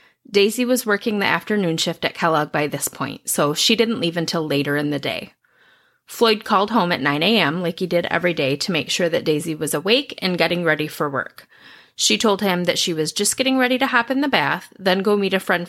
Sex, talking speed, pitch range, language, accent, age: female, 235 wpm, 160-220 Hz, English, American, 30-49